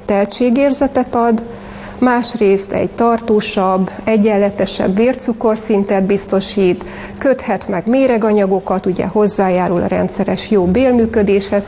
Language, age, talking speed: Hungarian, 30-49, 85 wpm